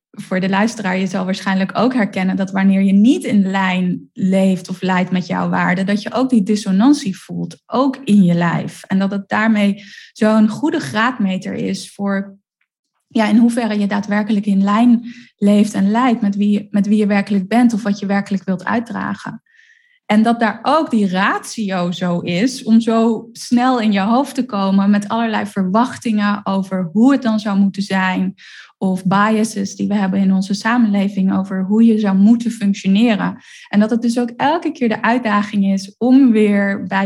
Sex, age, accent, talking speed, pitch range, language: female, 10-29, Dutch, 185 wpm, 195-230 Hz, Dutch